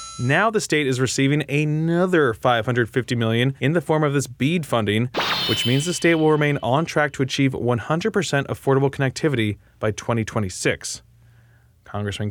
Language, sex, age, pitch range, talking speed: English, male, 20-39, 120-160 Hz, 150 wpm